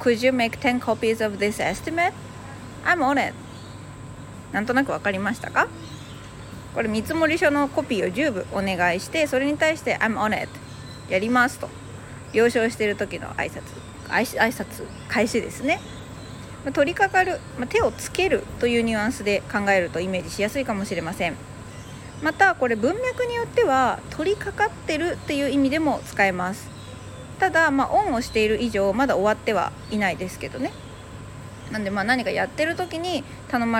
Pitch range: 190-280 Hz